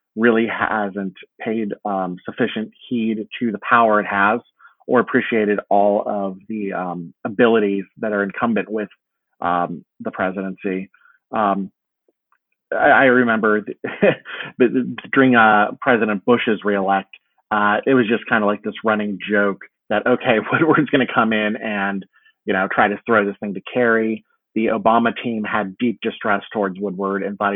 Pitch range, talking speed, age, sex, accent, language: 100-115 Hz, 155 wpm, 30-49, male, American, English